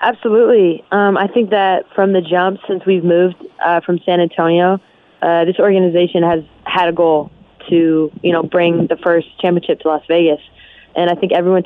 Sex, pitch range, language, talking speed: female, 170-195 Hz, English, 185 wpm